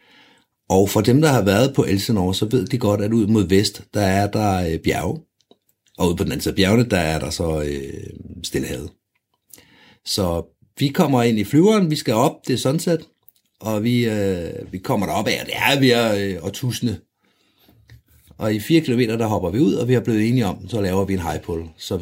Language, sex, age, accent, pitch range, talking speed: Danish, male, 60-79, native, 95-125 Hz, 220 wpm